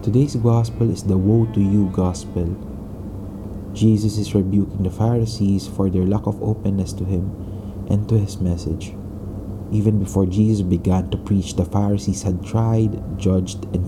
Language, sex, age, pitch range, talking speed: English, male, 20-39, 95-105 Hz, 155 wpm